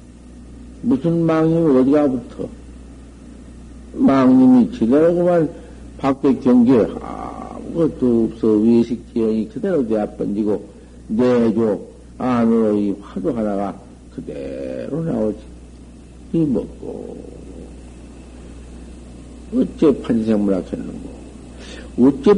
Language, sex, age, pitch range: Korean, male, 60-79, 110-170 Hz